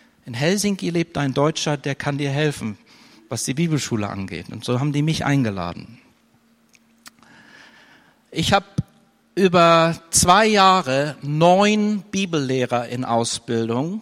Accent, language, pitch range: German, German, 130-170 Hz